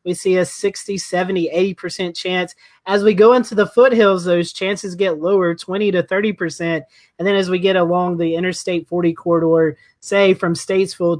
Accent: American